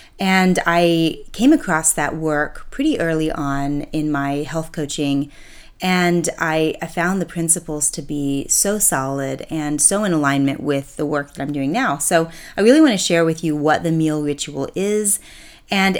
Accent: American